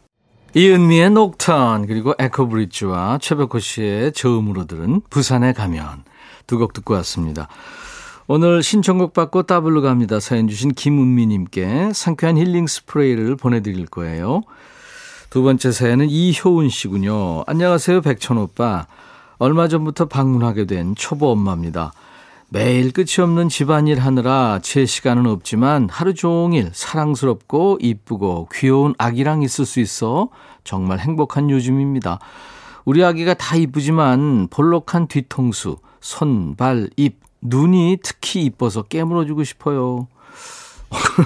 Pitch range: 115-165 Hz